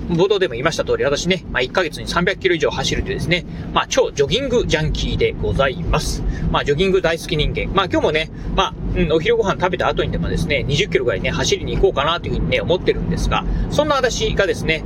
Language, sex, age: Japanese, male, 30-49